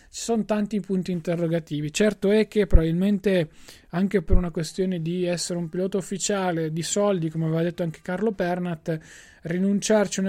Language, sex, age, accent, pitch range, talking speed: Italian, male, 20-39, native, 150-180 Hz, 165 wpm